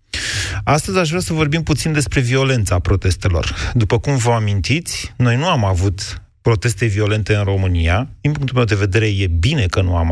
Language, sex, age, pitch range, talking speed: Romanian, male, 30-49, 100-130 Hz, 185 wpm